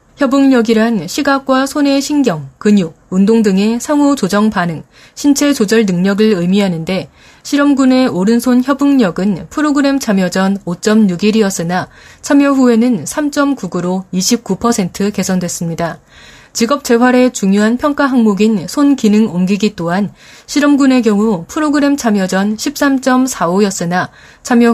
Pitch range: 185-260 Hz